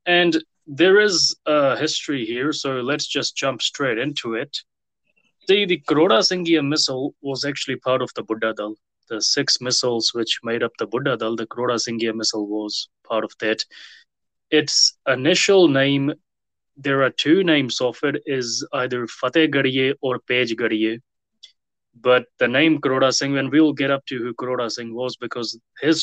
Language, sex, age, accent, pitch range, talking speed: English, male, 20-39, Indian, 115-145 Hz, 170 wpm